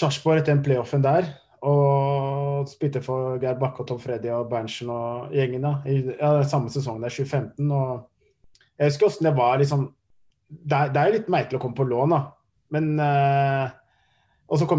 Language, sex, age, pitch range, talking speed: English, male, 20-39, 125-150 Hz, 175 wpm